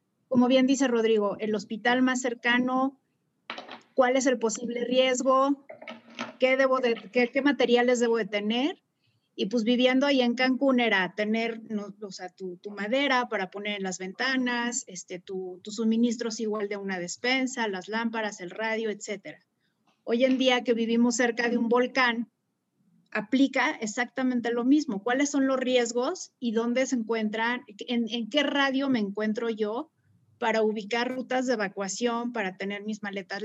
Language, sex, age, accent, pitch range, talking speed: Spanish, female, 30-49, Mexican, 210-250 Hz, 165 wpm